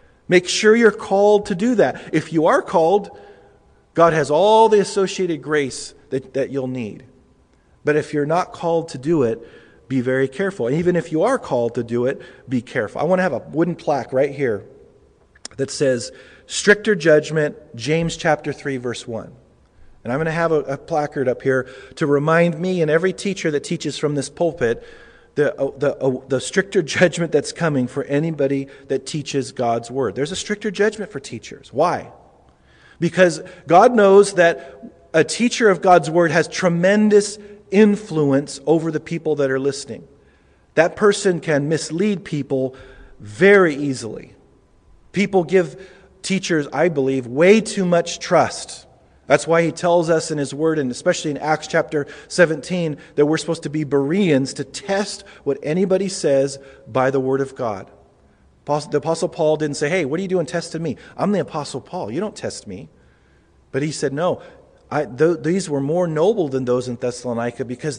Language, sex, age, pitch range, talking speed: English, male, 40-59, 135-180 Hz, 175 wpm